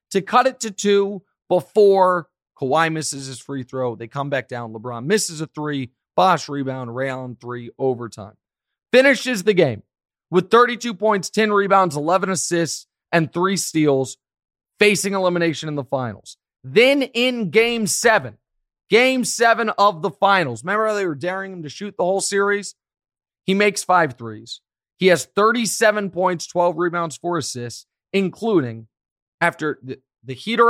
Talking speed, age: 155 wpm, 30-49